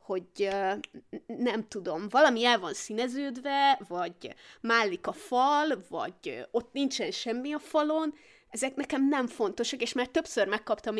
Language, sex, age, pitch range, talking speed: Hungarian, female, 20-39, 200-240 Hz, 145 wpm